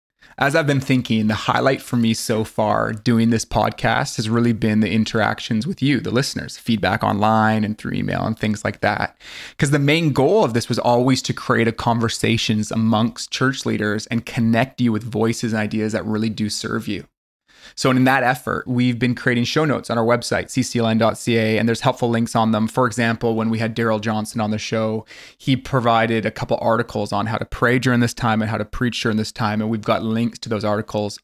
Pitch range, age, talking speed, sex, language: 110-120 Hz, 20-39, 215 wpm, male, English